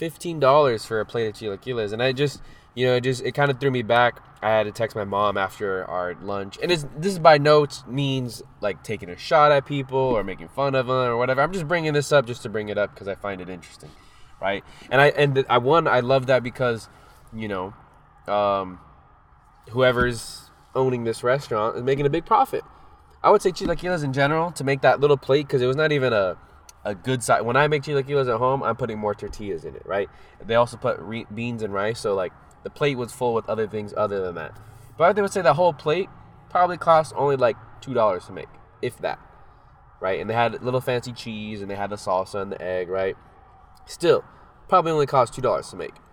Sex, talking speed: male, 235 wpm